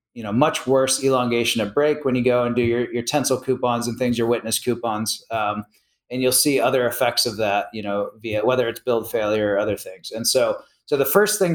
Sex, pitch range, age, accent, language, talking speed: male, 115-130 Hz, 30-49, American, English, 235 wpm